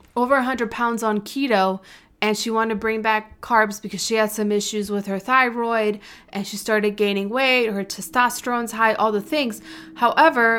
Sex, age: female, 20-39